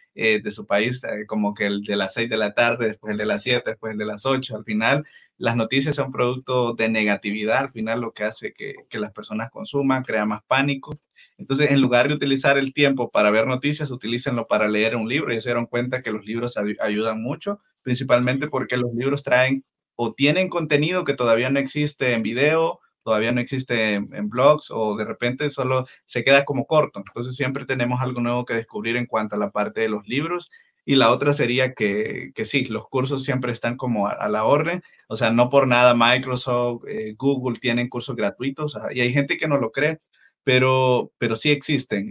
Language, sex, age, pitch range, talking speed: Spanish, male, 30-49, 115-140 Hz, 215 wpm